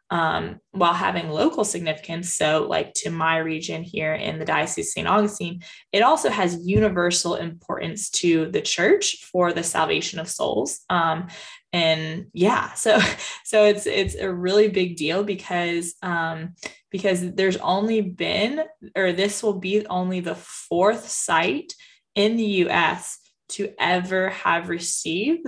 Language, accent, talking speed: English, American, 145 wpm